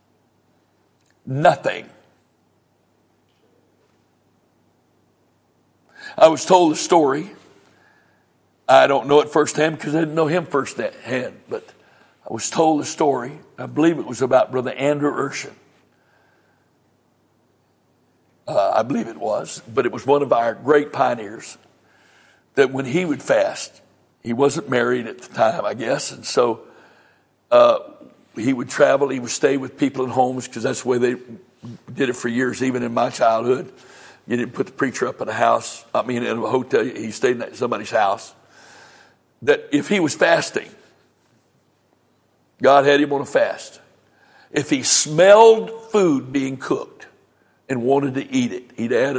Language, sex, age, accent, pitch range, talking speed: English, male, 60-79, American, 130-170 Hz, 155 wpm